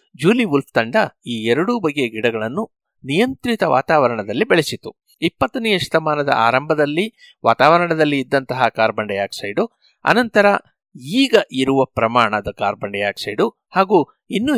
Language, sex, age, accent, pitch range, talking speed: Kannada, male, 60-79, native, 120-175 Hz, 105 wpm